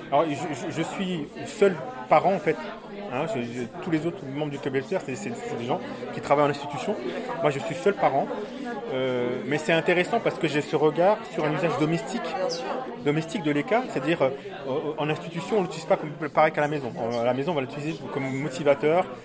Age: 30-49